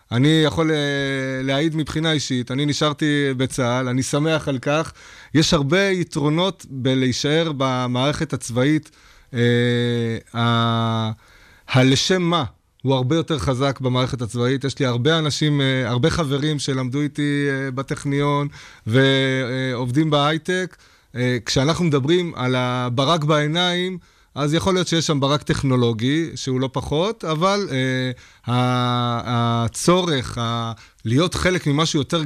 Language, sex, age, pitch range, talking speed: Hebrew, male, 20-39, 125-155 Hz, 115 wpm